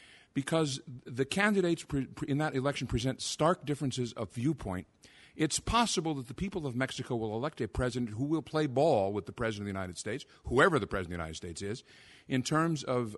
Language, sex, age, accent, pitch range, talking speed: English, male, 50-69, American, 110-150 Hz, 200 wpm